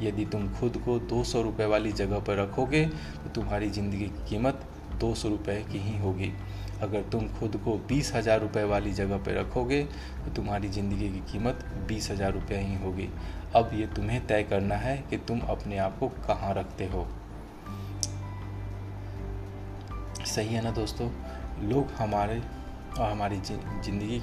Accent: native